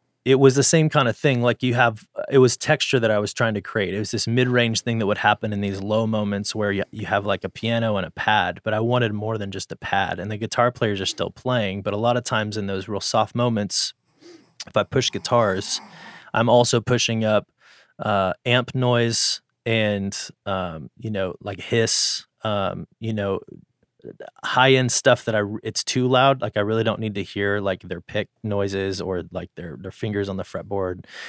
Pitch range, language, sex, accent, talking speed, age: 100-115 Hz, English, male, American, 215 wpm, 20-39